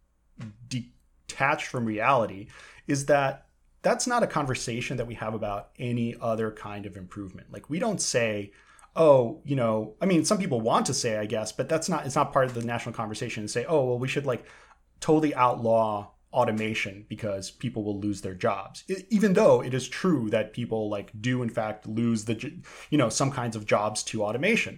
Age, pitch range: 30-49, 110-145 Hz